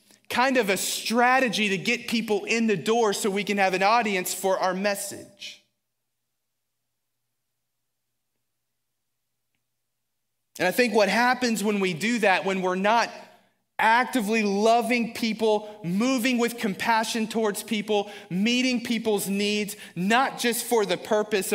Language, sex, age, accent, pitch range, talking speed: English, male, 30-49, American, 170-225 Hz, 130 wpm